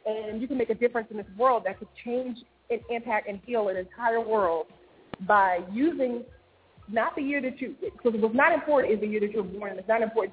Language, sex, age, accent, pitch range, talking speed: English, female, 30-49, American, 195-240 Hz, 240 wpm